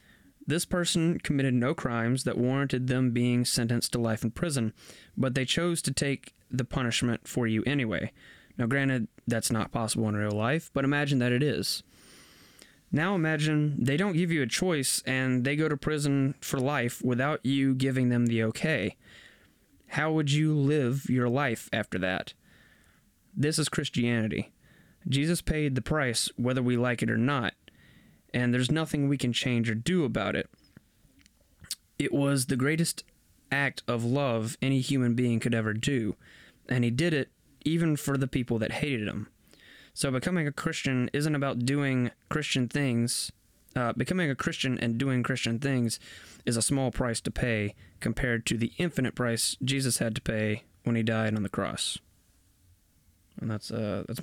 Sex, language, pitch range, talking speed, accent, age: male, English, 115-140 Hz, 170 wpm, American, 20-39